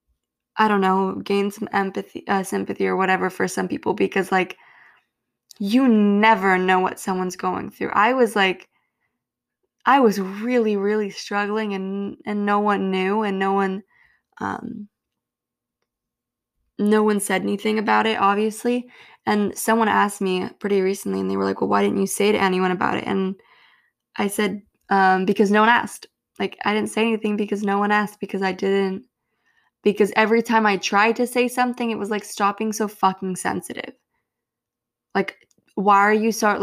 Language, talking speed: English, 175 wpm